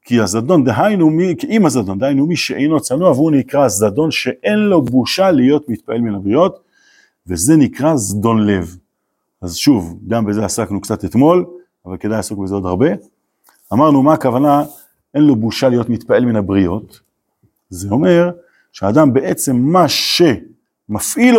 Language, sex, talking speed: Hebrew, male, 150 wpm